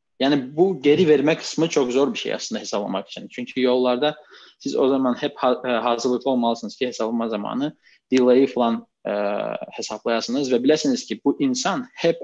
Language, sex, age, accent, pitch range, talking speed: Turkish, male, 20-39, native, 120-150 Hz, 160 wpm